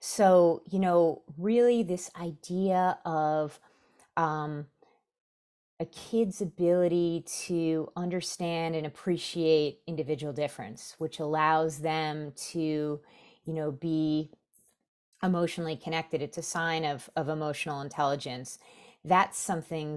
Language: English